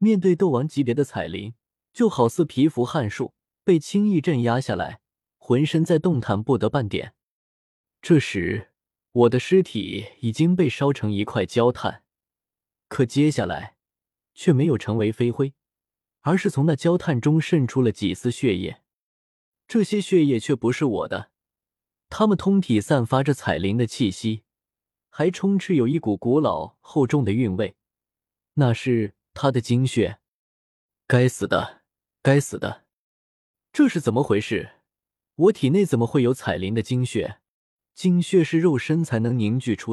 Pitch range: 110-160 Hz